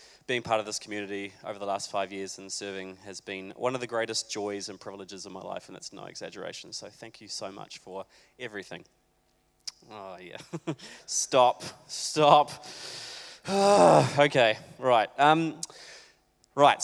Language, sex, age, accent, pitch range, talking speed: English, male, 20-39, Australian, 110-155 Hz, 155 wpm